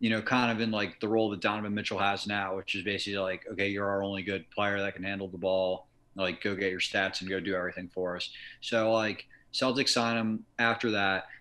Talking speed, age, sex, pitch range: 240 wpm, 30-49, male, 105-125 Hz